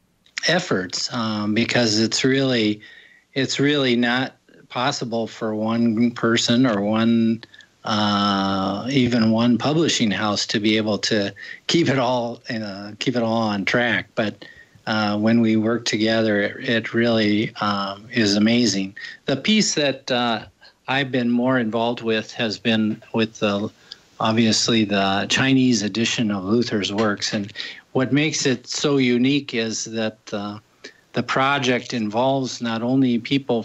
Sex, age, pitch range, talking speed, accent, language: male, 40-59, 110-125 Hz, 145 wpm, American, English